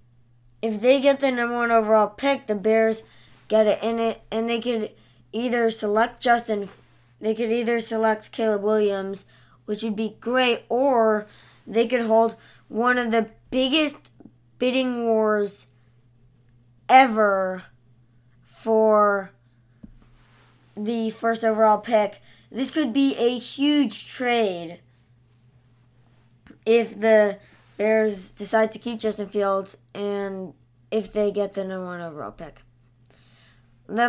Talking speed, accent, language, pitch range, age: 125 wpm, American, English, 180-230 Hz, 20-39